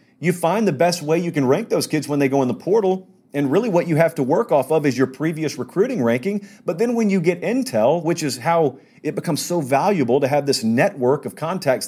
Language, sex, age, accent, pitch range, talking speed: English, male, 40-59, American, 125-175 Hz, 250 wpm